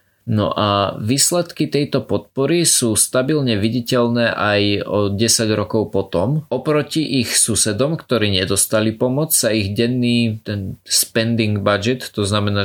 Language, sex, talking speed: Slovak, male, 130 wpm